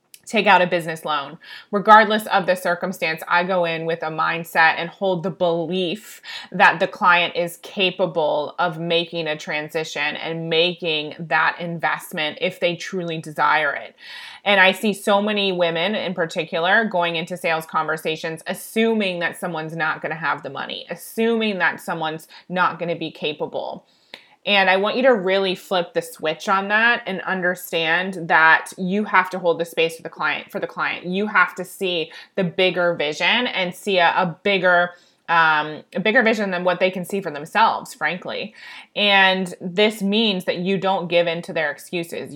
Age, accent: 20-39, American